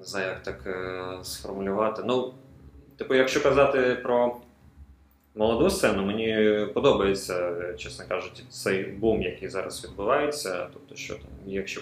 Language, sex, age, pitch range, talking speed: Ukrainian, male, 20-39, 95-120 Hz, 125 wpm